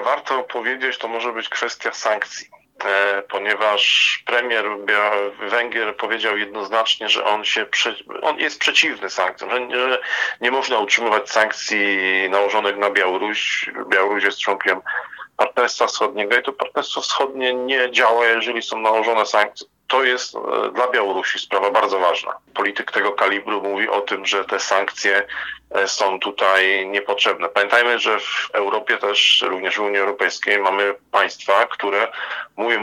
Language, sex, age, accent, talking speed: Polish, male, 40-59, native, 140 wpm